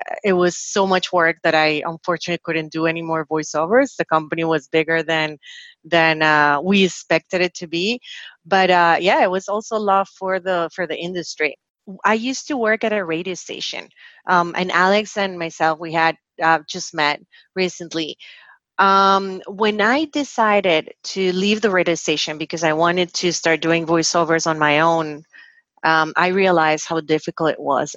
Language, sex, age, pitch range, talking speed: English, female, 30-49, 160-190 Hz, 175 wpm